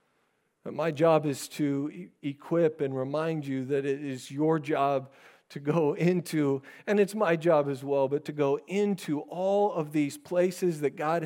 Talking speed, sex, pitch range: 170 wpm, male, 130-165 Hz